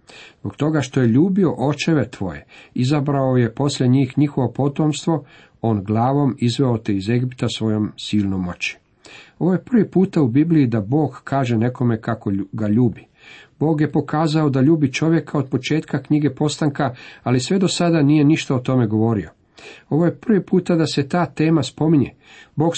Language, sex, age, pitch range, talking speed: Croatian, male, 50-69, 115-150 Hz, 170 wpm